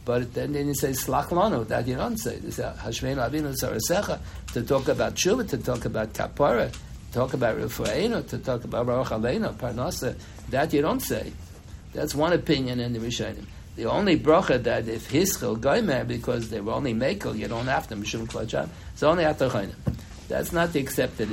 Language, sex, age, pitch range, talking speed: English, male, 60-79, 110-145 Hz, 175 wpm